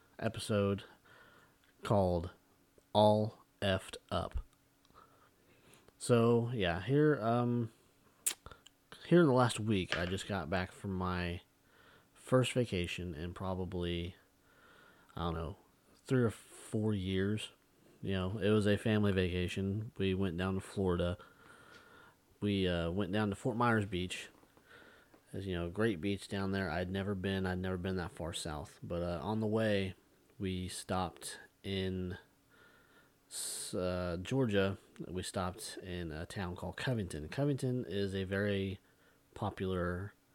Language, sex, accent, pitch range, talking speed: English, male, American, 90-110 Hz, 130 wpm